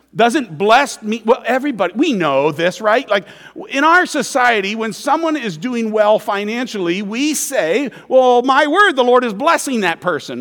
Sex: male